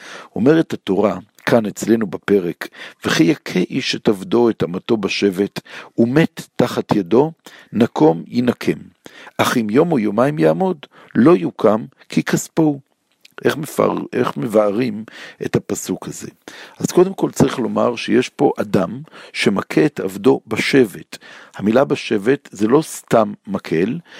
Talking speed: 130 wpm